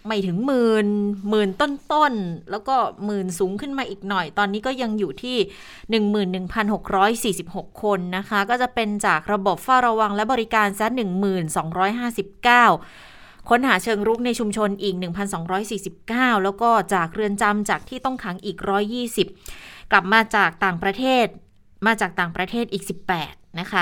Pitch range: 185-225 Hz